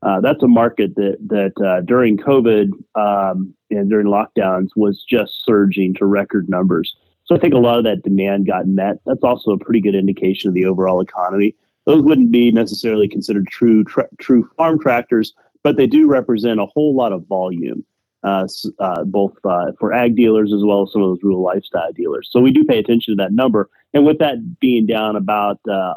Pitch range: 100-125 Hz